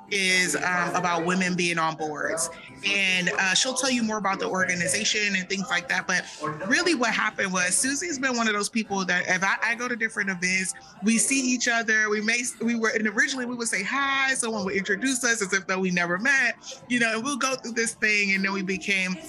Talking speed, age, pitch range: 235 wpm, 30-49, 180-235 Hz